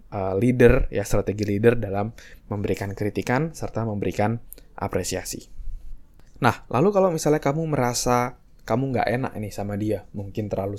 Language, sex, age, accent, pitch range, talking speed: Indonesian, male, 20-39, native, 100-125 Hz, 135 wpm